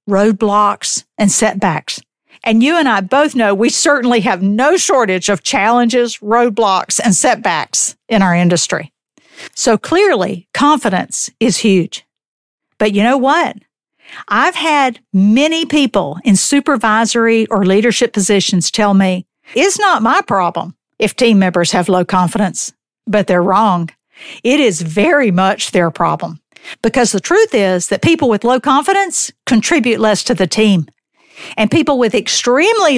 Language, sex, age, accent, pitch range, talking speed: English, female, 50-69, American, 190-270 Hz, 145 wpm